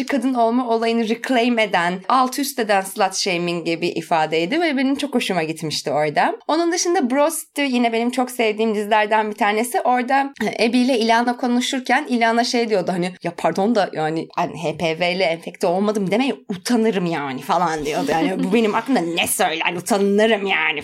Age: 30-49